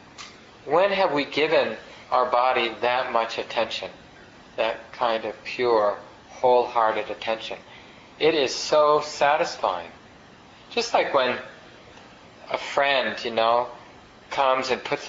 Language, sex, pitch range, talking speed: English, male, 120-140 Hz, 115 wpm